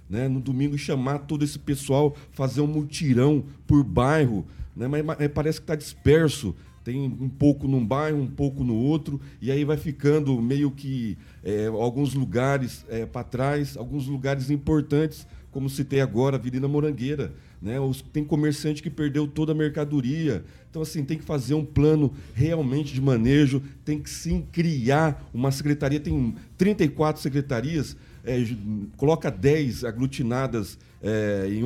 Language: Portuguese